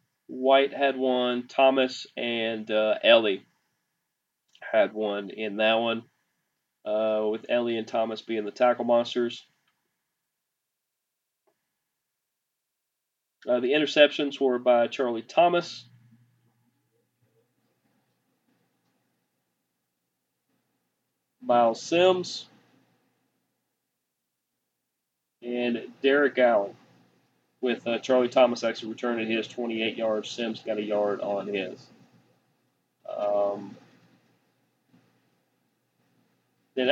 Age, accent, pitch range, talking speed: 40-59, American, 115-135 Hz, 80 wpm